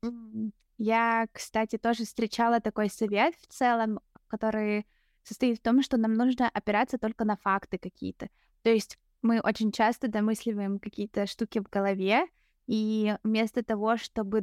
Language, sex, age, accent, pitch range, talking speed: Russian, female, 20-39, native, 195-230 Hz, 145 wpm